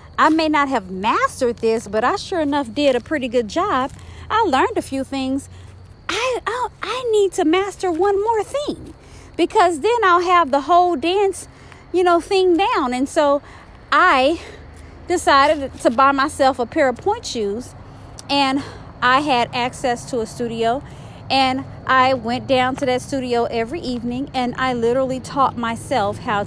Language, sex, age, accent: English, female, 40-59, American